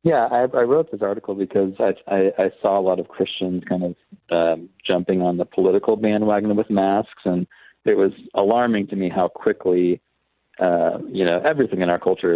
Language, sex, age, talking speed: English, male, 40-59, 195 wpm